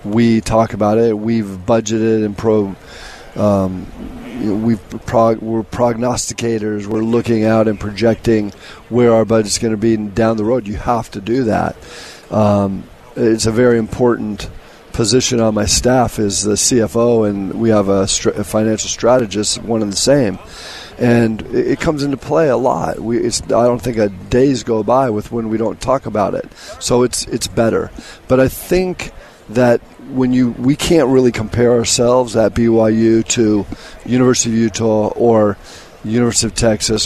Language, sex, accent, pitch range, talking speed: English, male, American, 105-120 Hz, 170 wpm